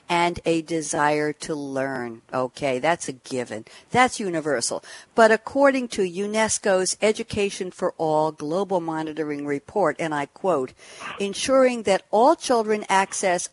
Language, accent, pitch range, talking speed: English, American, 170-230 Hz, 130 wpm